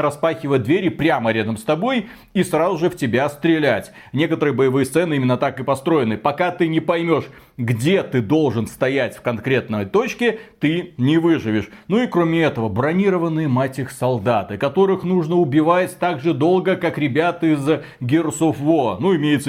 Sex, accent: male, native